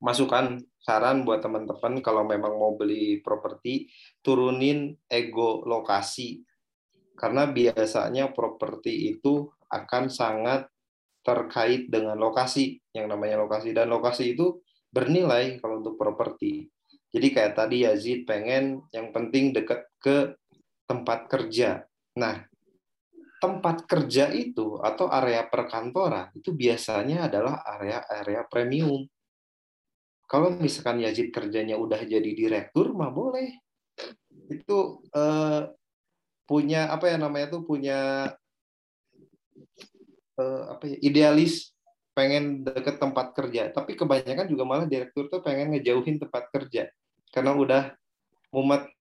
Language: Indonesian